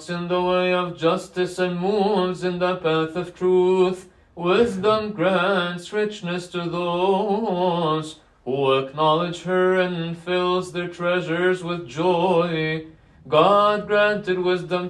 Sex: male